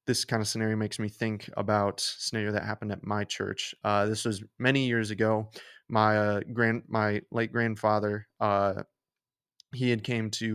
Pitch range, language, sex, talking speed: 105-115 Hz, English, male, 175 wpm